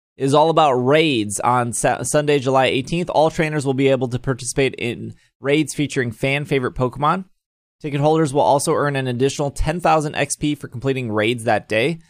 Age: 20-39